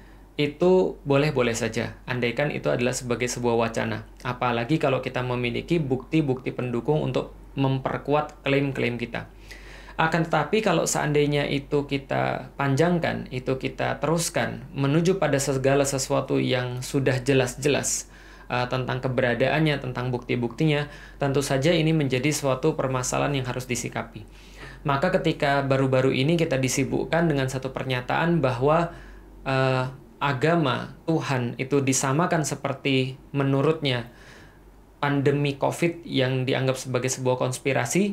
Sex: male